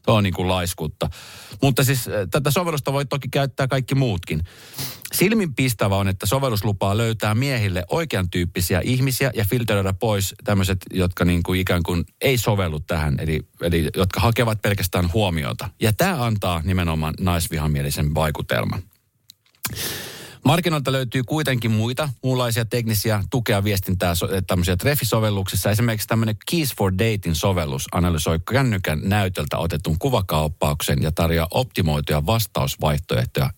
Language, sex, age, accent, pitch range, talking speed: Finnish, male, 30-49, native, 90-120 Hz, 125 wpm